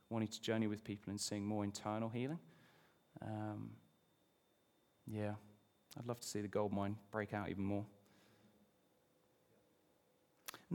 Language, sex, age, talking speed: English, male, 30-49, 135 wpm